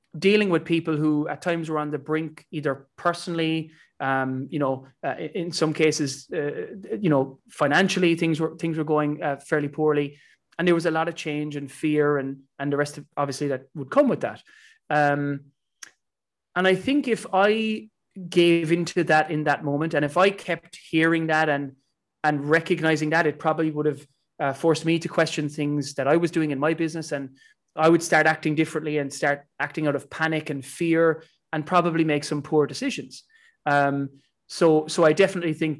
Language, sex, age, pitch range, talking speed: English, male, 20-39, 145-170 Hz, 195 wpm